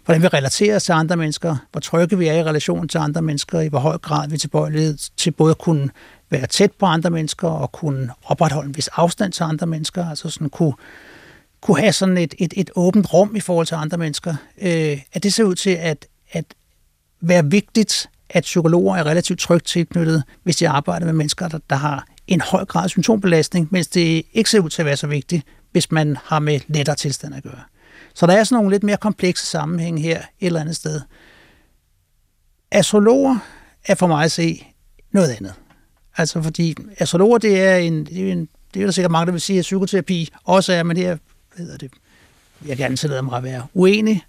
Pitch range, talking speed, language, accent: 150-185 Hz, 205 wpm, Danish, native